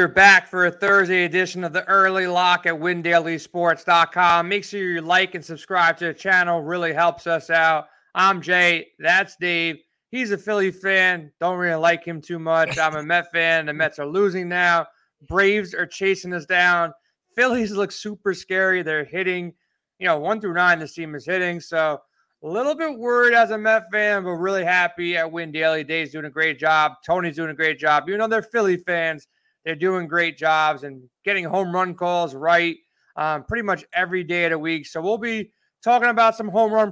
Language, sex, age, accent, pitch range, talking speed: English, male, 30-49, American, 170-200 Hz, 200 wpm